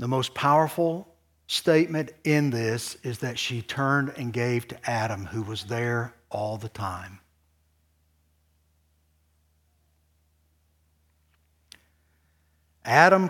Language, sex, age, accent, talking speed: English, male, 60-79, American, 95 wpm